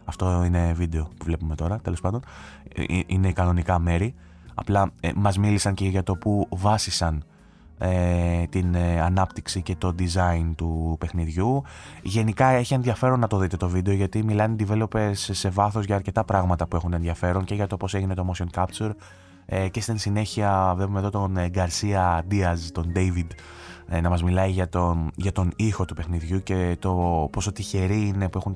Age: 20-39